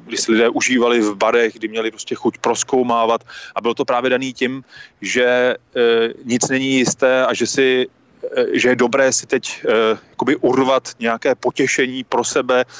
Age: 30-49